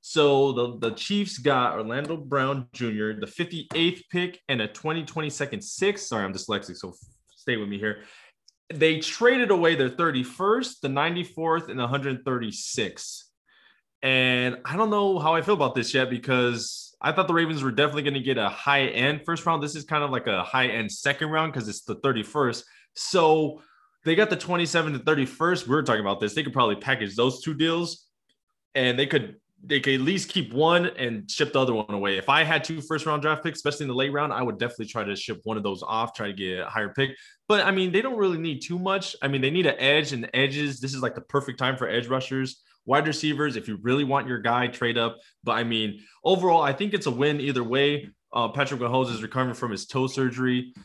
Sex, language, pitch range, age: male, English, 120-160 Hz, 20-39